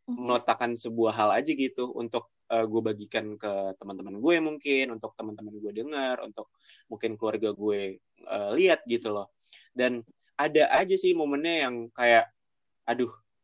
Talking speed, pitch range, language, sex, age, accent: 145 wpm, 110-140 Hz, Indonesian, male, 20-39, native